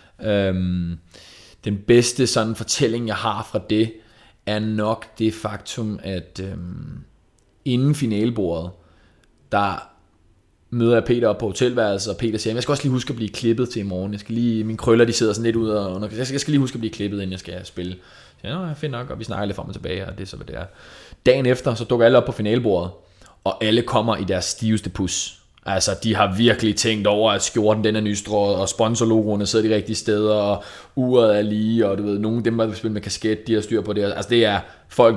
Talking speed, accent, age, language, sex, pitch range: 230 wpm, native, 20-39, Danish, male, 100-120 Hz